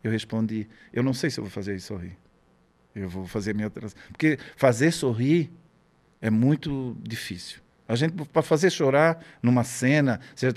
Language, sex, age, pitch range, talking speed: Portuguese, male, 50-69, 120-155 Hz, 165 wpm